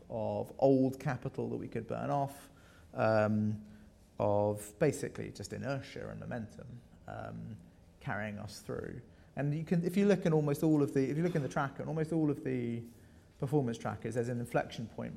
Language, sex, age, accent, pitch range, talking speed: English, male, 30-49, British, 105-150 Hz, 180 wpm